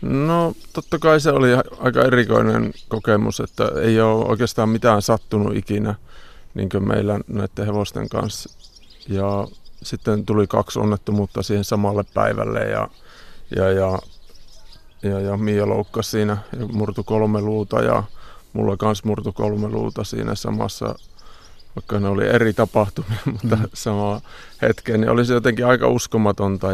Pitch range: 100-115 Hz